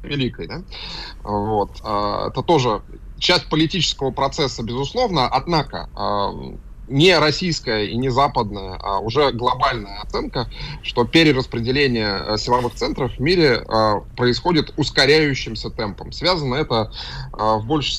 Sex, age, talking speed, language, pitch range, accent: male, 20-39, 105 wpm, Russian, 105-140 Hz, native